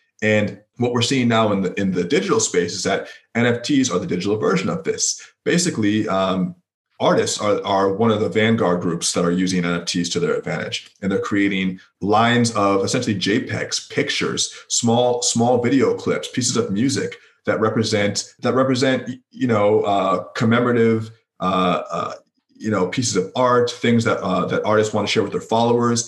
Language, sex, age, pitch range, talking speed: English, male, 30-49, 95-120 Hz, 180 wpm